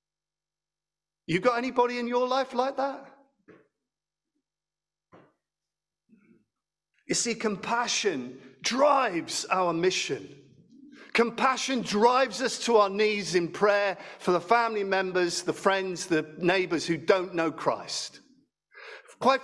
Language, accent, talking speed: English, British, 110 wpm